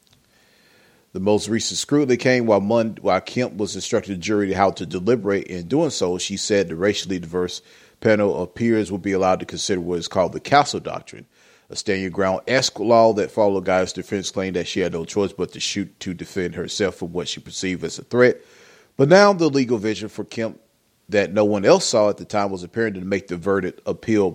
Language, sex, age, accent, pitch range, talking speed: English, male, 40-59, American, 95-140 Hz, 210 wpm